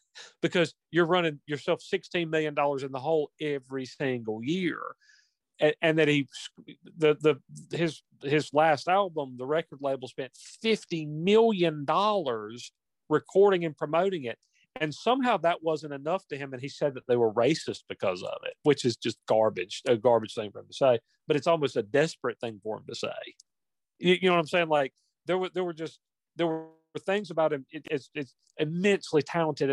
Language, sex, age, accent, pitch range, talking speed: English, male, 40-59, American, 125-165 Hz, 185 wpm